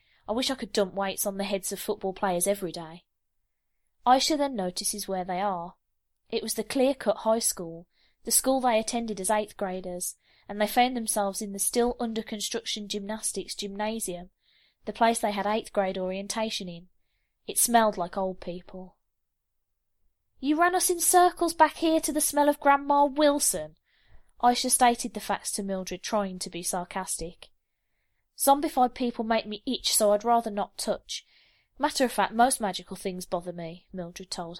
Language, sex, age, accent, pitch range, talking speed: English, female, 20-39, British, 185-240 Hz, 165 wpm